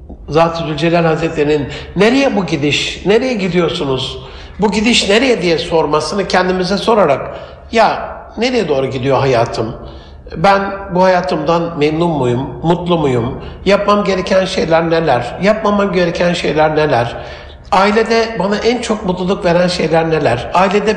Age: 60-79